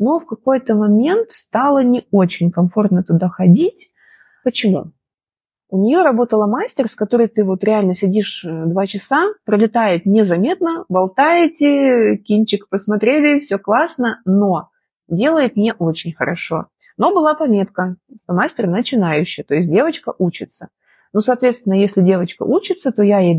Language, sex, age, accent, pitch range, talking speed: Russian, female, 20-39, native, 190-265 Hz, 135 wpm